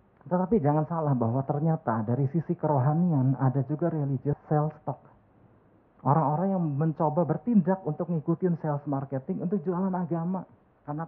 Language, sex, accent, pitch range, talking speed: Indonesian, male, native, 130-165 Hz, 135 wpm